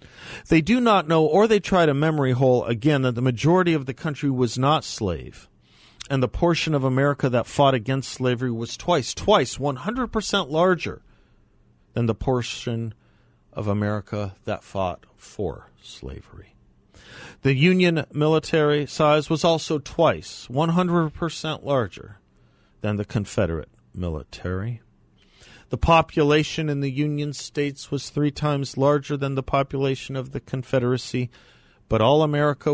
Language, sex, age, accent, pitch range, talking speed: English, male, 40-59, American, 115-150 Hz, 140 wpm